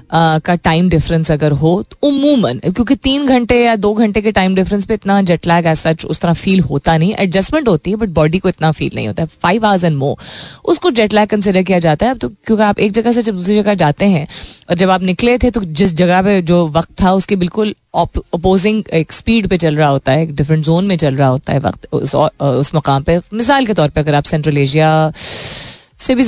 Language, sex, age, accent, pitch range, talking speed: Hindi, female, 20-39, native, 155-215 Hz, 240 wpm